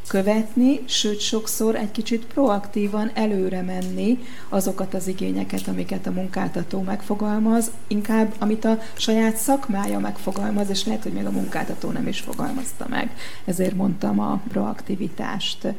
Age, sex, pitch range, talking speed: 40-59, female, 185-220 Hz, 135 wpm